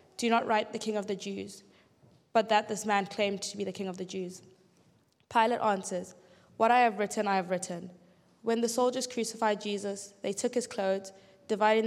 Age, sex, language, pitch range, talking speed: 20-39, female, English, 185-215 Hz, 195 wpm